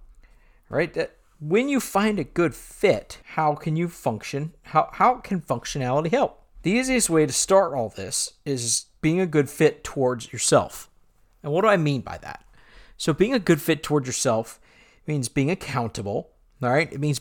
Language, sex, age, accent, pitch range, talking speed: English, male, 50-69, American, 125-175 Hz, 180 wpm